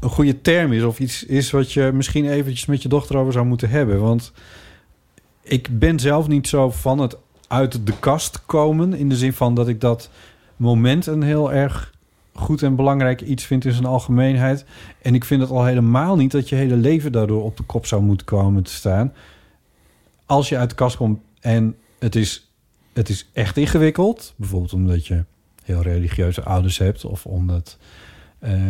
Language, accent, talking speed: Dutch, Dutch, 190 wpm